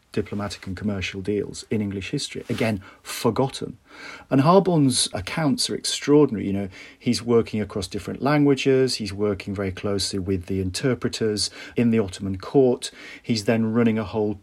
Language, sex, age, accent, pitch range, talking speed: English, male, 40-59, British, 100-120 Hz, 155 wpm